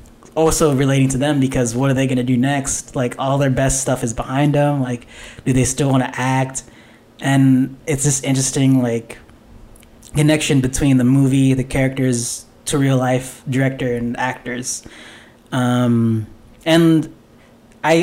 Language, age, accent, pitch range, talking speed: English, 10-29, American, 125-150 Hz, 155 wpm